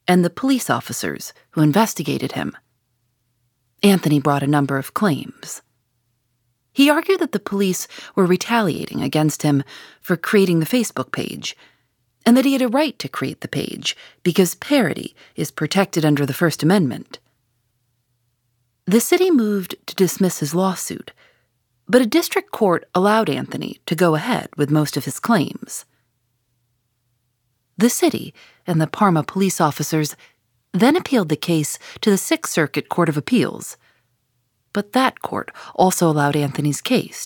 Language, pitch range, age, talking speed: English, 125-205 Hz, 30-49, 145 wpm